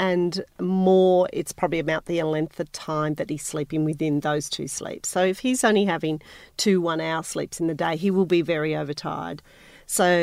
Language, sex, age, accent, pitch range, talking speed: English, female, 40-59, Australian, 165-200 Hz, 195 wpm